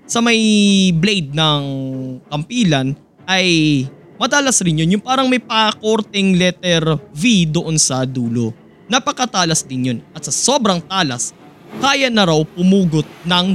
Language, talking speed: Filipino, 135 wpm